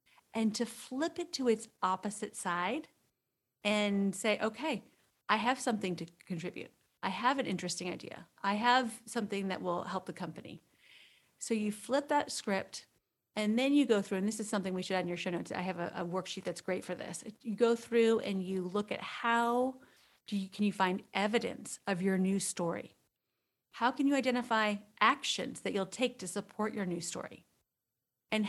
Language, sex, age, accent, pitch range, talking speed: English, female, 40-59, American, 190-245 Hz, 185 wpm